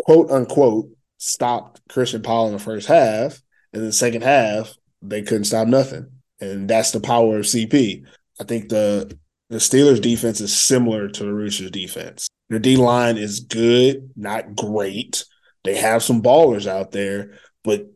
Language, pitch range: English, 105-120 Hz